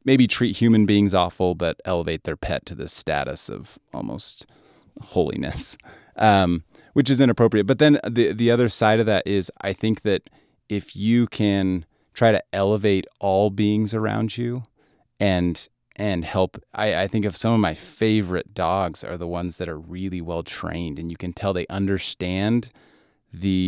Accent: American